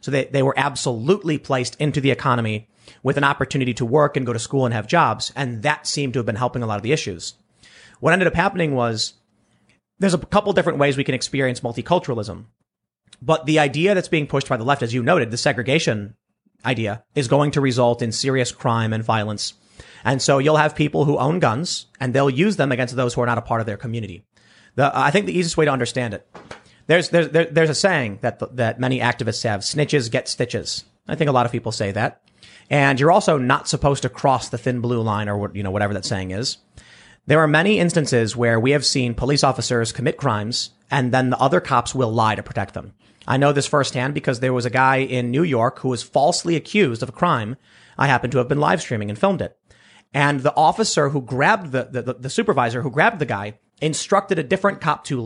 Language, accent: English, American